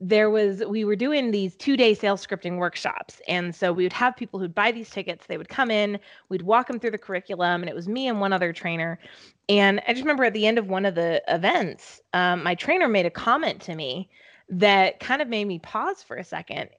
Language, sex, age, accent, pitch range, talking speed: English, female, 20-39, American, 180-220 Hz, 240 wpm